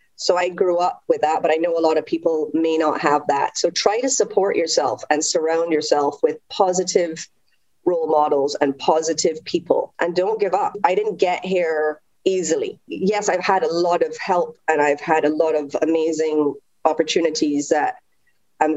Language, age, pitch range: English, 30-49, 155-195 Hz